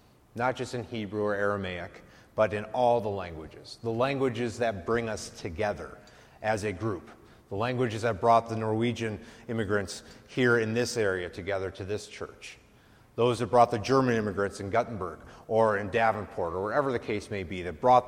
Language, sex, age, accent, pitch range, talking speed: English, male, 30-49, American, 105-125 Hz, 180 wpm